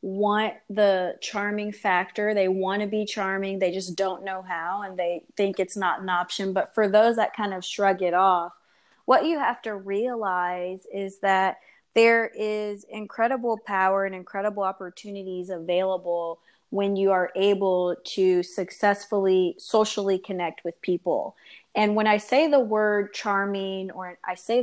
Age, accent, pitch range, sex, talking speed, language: 20-39, American, 185-215 Hz, female, 160 wpm, English